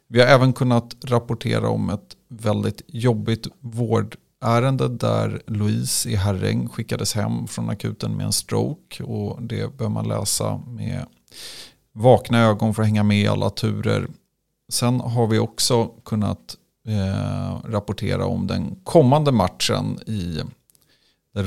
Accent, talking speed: native, 130 wpm